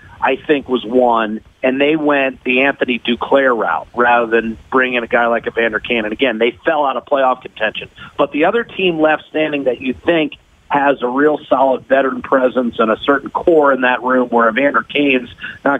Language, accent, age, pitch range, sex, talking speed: English, American, 40-59, 120-145 Hz, male, 205 wpm